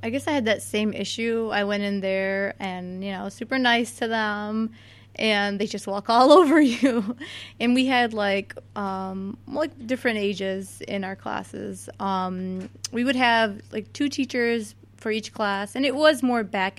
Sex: female